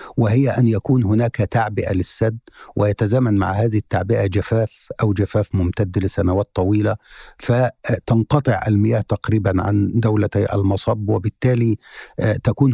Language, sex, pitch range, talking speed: Arabic, male, 105-130 Hz, 115 wpm